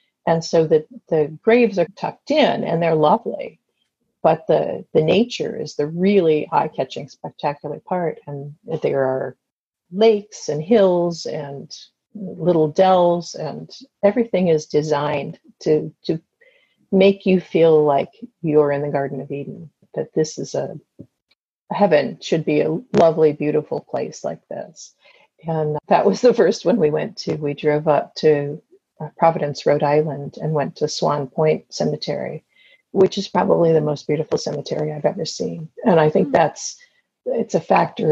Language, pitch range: English, 150-195 Hz